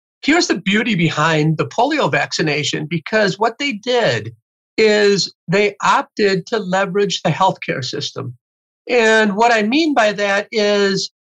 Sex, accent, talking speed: male, American, 140 wpm